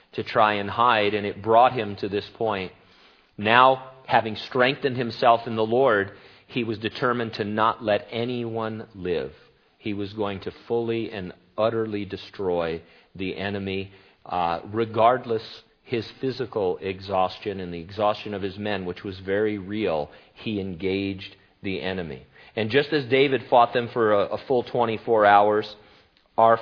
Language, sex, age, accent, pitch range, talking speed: English, male, 40-59, American, 100-120 Hz, 155 wpm